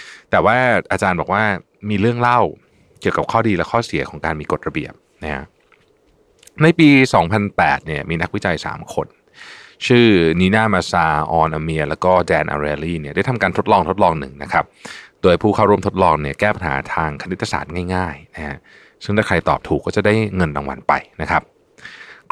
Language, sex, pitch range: Thai, male, 80-110 Hz